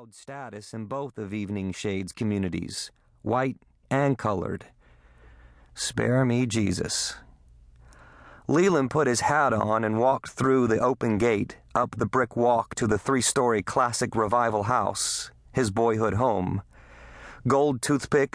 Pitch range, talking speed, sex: 105-130 Hz, 130 wpm, male